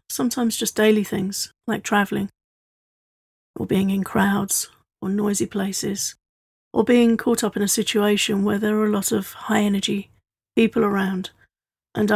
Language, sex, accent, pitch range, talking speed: English, female, British, 190-215 Hz, 150 wpm